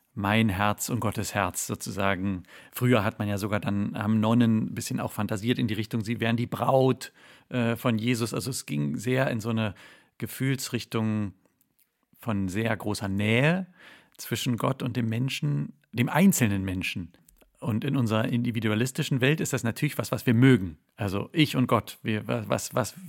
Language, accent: German, German